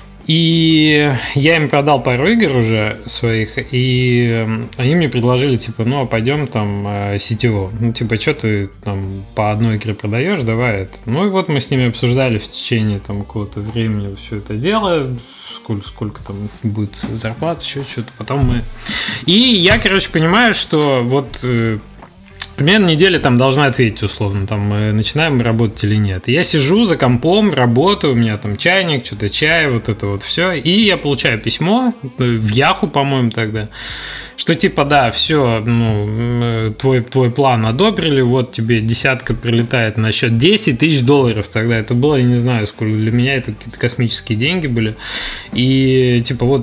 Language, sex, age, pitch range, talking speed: Russian, male, 20-39, 110-145 Hz, 165 wpm